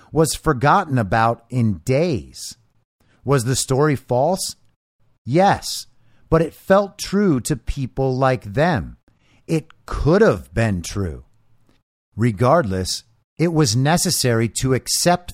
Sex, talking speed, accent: male, 115 wpm, American